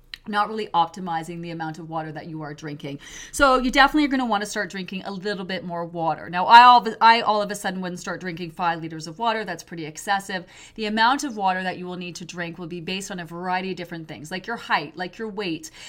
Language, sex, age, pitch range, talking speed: English, female, 30-49, 175-225 Hz, 260 wpm